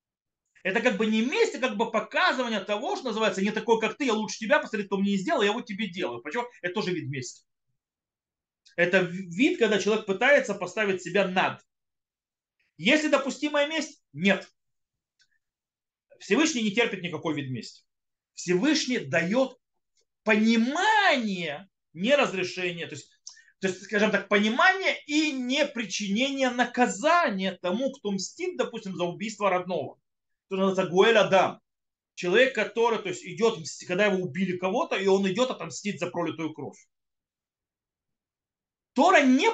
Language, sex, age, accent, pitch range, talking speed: Russian, male, 30-49, native, 180-250 Hz, 145 wpm